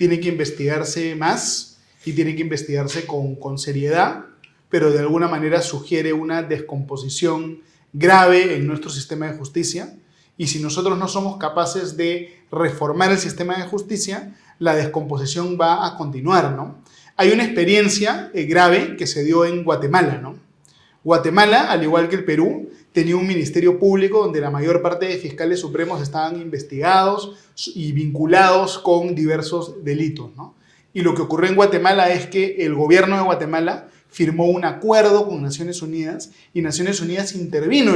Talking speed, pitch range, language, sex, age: 155 wpm, 155-185 Hz, Spanish, male, 30-49